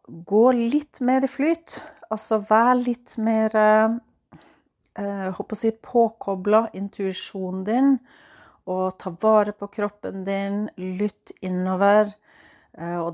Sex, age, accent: female, 40-59, Swedish